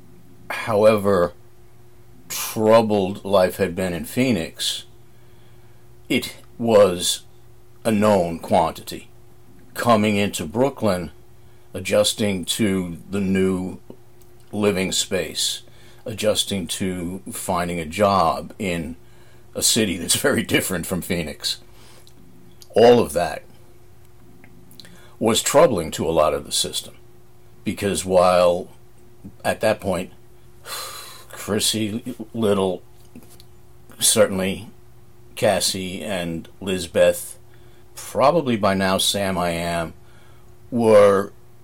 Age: 50-69